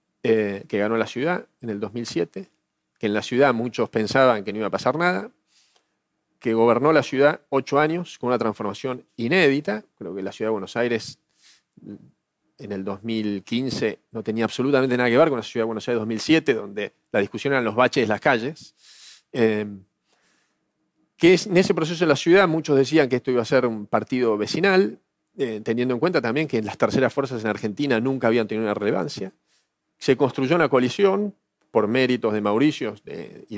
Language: Spanish